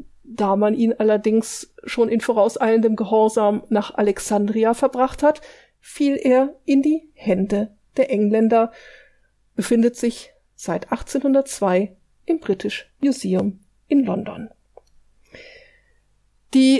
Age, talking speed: 50-69, 105 wpm